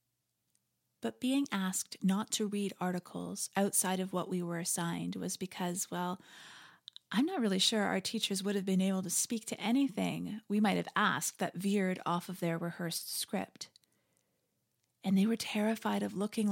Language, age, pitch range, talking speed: English, 30-49, 180-225 Hz, 170 wpm